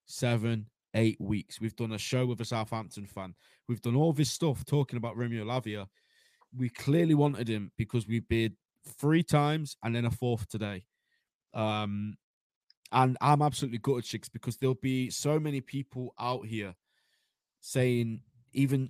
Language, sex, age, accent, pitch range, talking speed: English, male, 20-39, British, 115-140 Hz, 160 wpm